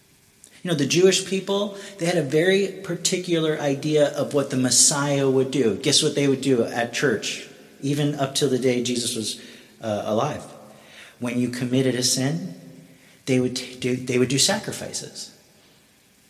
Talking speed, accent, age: 165 wpm, American, 40-59